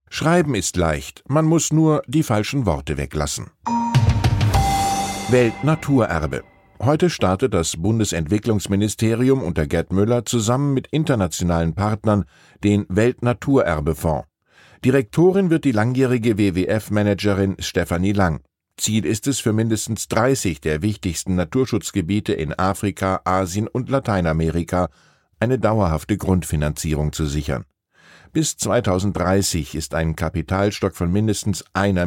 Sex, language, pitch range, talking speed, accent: male, German, 90-125 Hz, 110 wpm, German